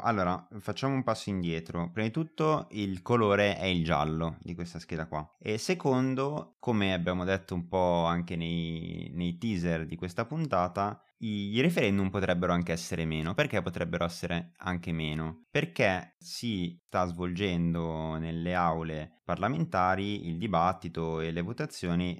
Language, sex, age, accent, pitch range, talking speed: Italian, male, 20-39, native, 85-105 Hz, 150 wpm